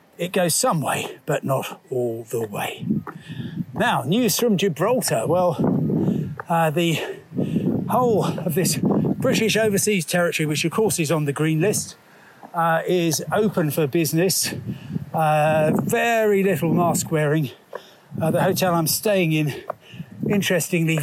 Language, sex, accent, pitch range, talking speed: English, male, British, 150-185 Hz, 135 wpm